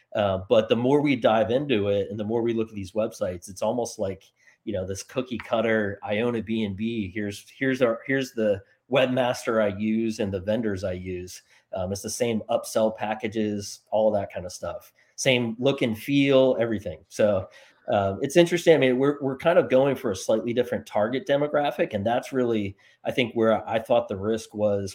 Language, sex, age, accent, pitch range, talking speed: English, male, 30-49, American, 100-120 Hz, 200 wpm